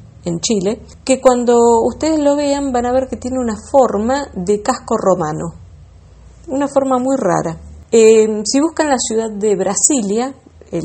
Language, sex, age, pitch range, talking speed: Spanish, female, 50-69, 180-245 Hz, 160 wpm